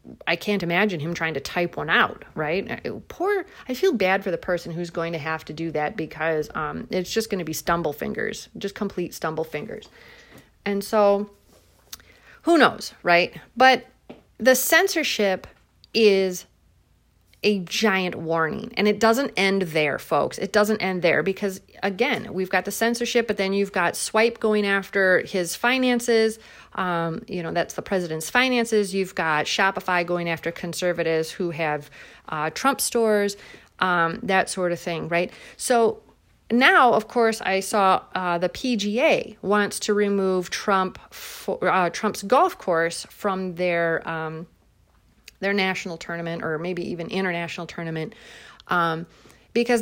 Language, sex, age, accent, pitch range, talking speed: English, female, 30-49, American, 175-230 Hz, 155 wpm